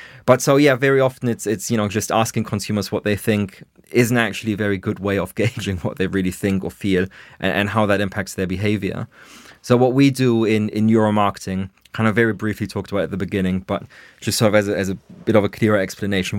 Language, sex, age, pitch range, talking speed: English, male, 20-39, 95-110 Hz, 240 wpm